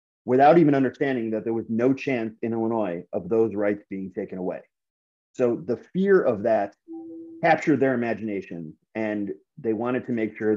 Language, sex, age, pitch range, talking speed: English, male, 30-49, 105-130 Hz, 170 wpm